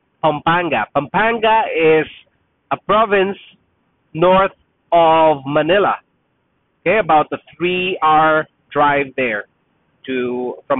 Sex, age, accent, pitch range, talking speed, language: male, 30-49, Filipino, 145-180 Hz, 95 wpm, English